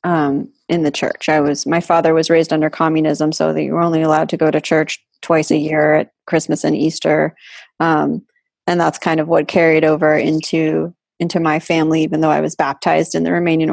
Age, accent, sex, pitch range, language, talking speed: 20-39, American, female, 155-180 Hz, English, 215 wpm